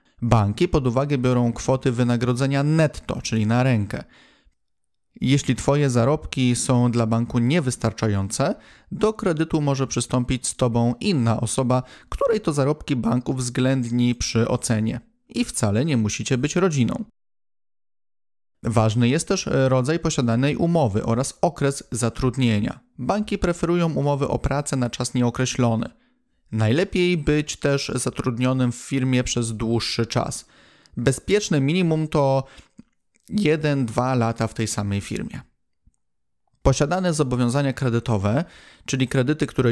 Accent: native